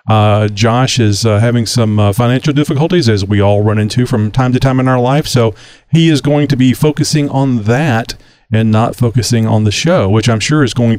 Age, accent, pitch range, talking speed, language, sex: 50-69, American, 110-145 Hz, 225 wpm, English, male